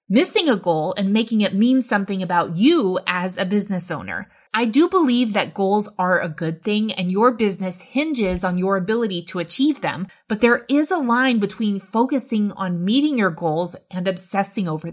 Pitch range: 190-255 Hz